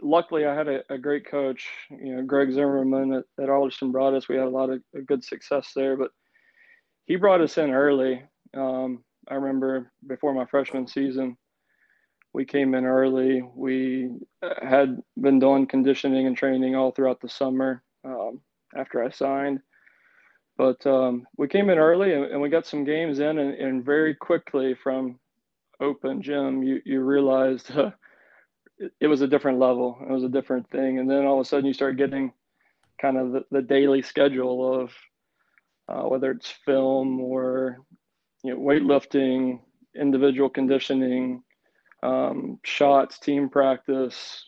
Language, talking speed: English, 165 wpm